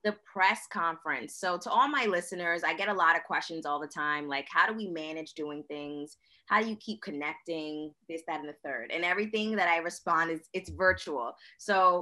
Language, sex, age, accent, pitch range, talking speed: English, female, 20-39, American, 160-200 Hz, 215 wpm